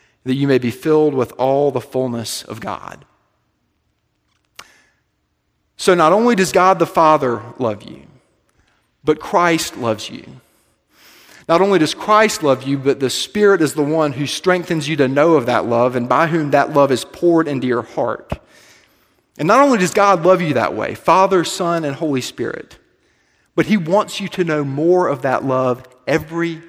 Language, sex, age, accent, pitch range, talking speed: English, male, 40-59, American, 130-170 Hz, 180 wpm